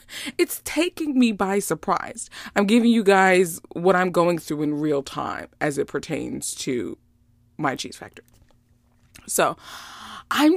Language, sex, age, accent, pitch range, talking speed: English, female, 20-39, American, 180-295 Hz, 140 wpm